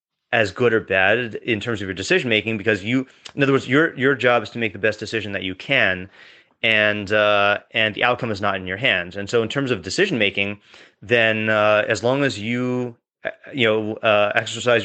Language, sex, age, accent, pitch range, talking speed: English, male, 30-49, American, 105-120 Hz, 210 wpm